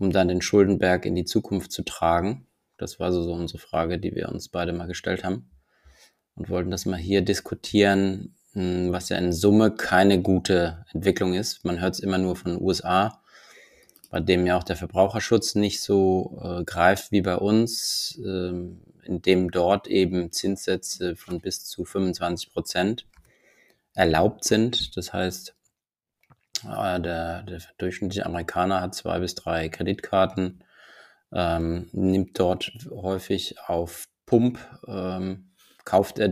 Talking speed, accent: 145 wpm, German